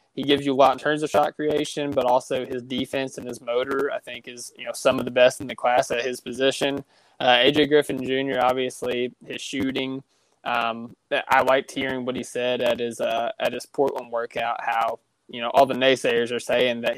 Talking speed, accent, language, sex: 220 wpm, American, English, male